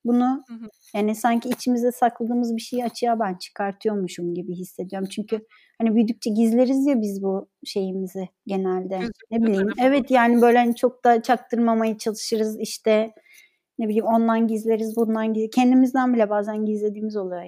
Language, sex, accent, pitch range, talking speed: Turkish, female, native, 220-280 Hz, 150 wpm